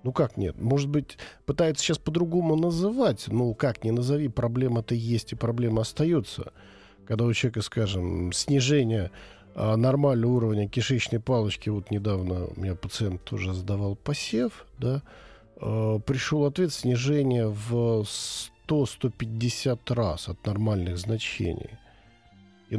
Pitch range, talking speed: 100-135 Hz, 120 wpm